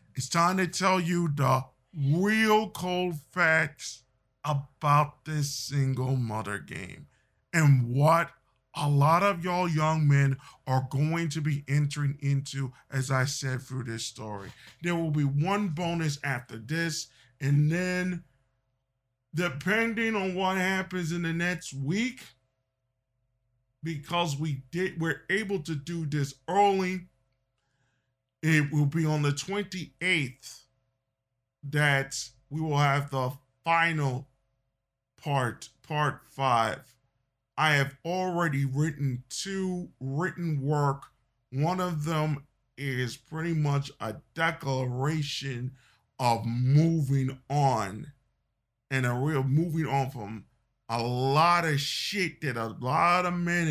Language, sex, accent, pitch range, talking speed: English, male, American, 130-165 Hz, 120 wpm